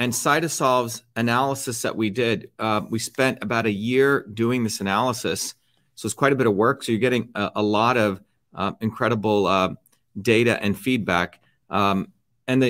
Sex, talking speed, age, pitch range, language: male, 180 wpm, 40-59, 110-135 Hz, English